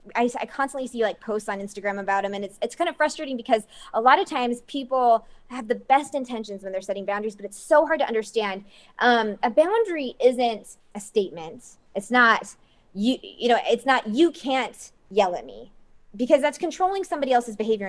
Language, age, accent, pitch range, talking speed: English, 20-39, American, 210-275 Hz, 200 wpm